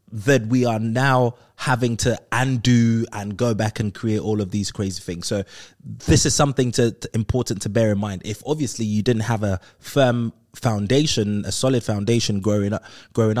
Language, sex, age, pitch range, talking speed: English, male, 20-39, 105-130 Hz, 190 wpm